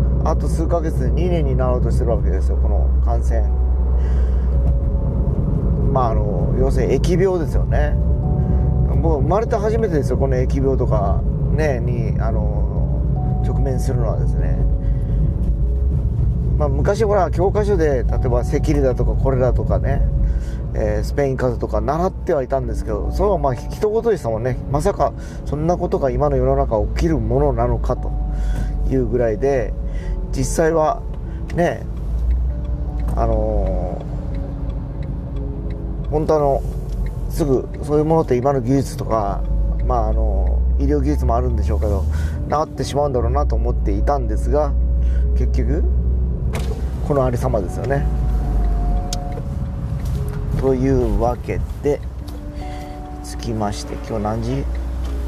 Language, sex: Japanese, male